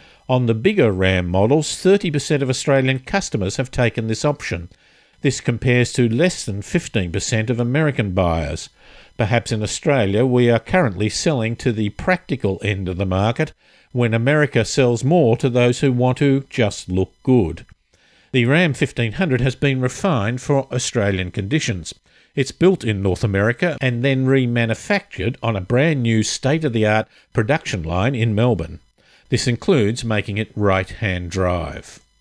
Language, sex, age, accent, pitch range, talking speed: English, male, 50-69, Australian, 100-135 Hz, 150 wpm